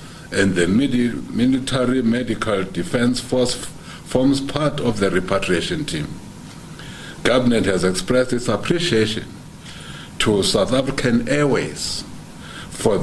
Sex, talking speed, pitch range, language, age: male, 100 wpm, 95-120 Hz, English, 60-79